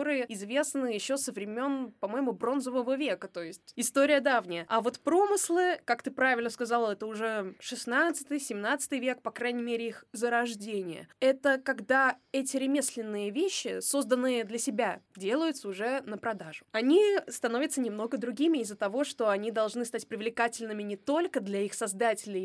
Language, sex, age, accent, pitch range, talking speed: Russian, female, 20-39, native, 220-270 Hz, 150 wpm